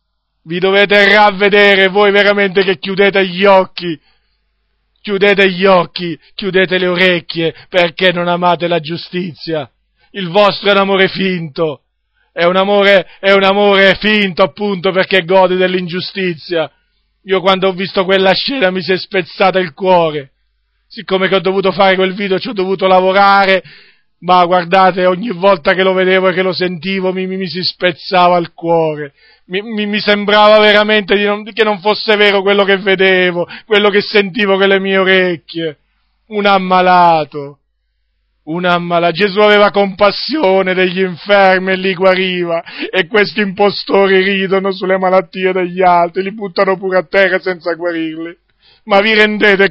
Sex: male